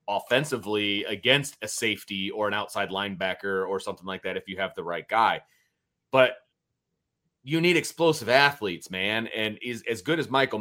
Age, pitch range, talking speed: 30-49, 110-135 Hz, 170 wpm